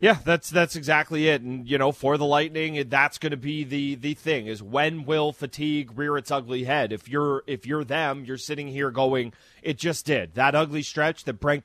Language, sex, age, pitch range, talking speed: English, male, 30-49, 135-165 Hz, 220 wpm